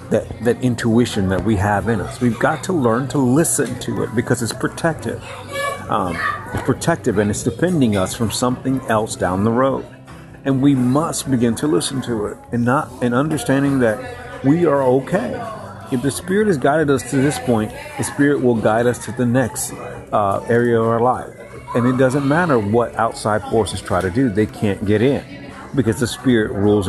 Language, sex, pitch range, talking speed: English, male, 110-135 Hz, 195 wpm